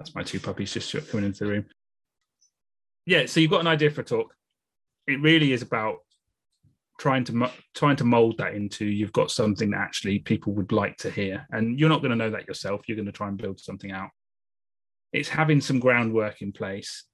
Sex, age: male, 30-49